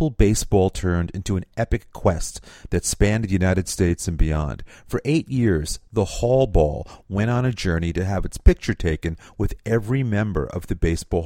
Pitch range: 90-120 Hz